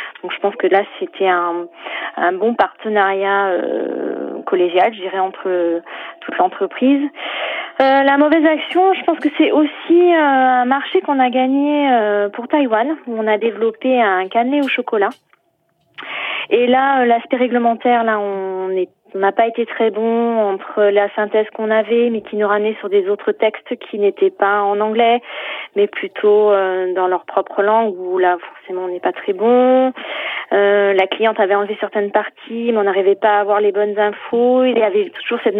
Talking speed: 185 wpm